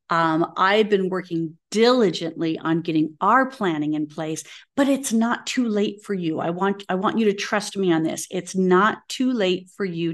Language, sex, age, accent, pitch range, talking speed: English, female, 50-69, American, 165-220 Hz, 200 wpm